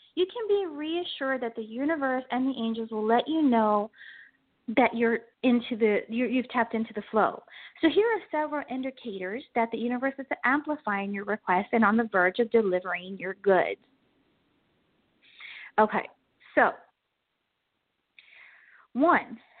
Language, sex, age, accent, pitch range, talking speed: English, female, 30-49, American, 225-295 Hz, 140 wpm